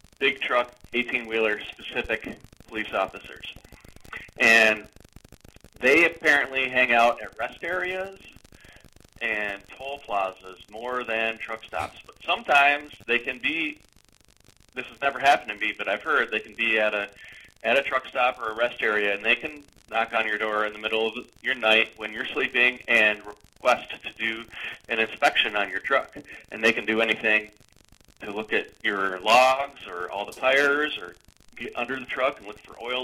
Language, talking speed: English, 170 wpm